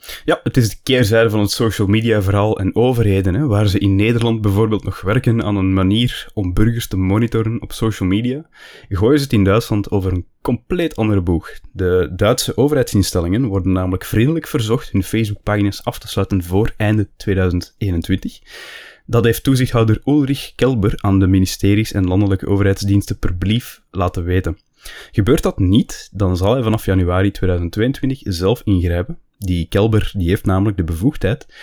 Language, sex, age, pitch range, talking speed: Dutch, male, 20-39, 95-115 Hz, 165 wpm